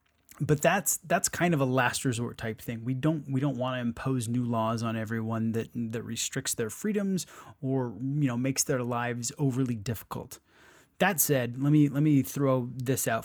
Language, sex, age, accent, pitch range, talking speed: English, male, 20-39, American, 120-140 Hz, 195 wpm